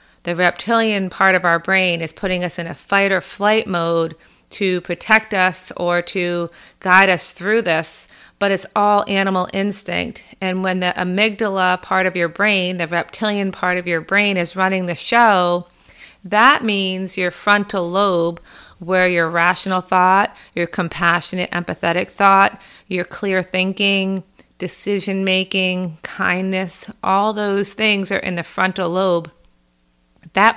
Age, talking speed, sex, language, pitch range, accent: 30-49, 145 wpm, female, English, 175-195 Hz, American